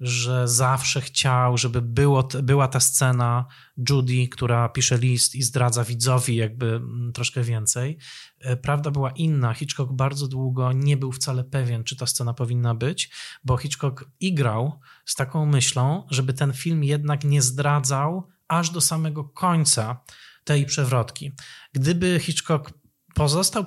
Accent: native